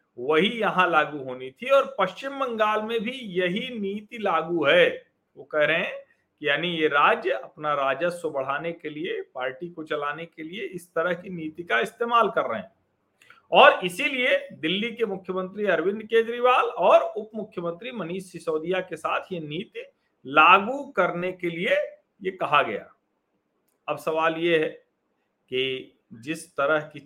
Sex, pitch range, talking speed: male, 160-225 Hz, 160 wpm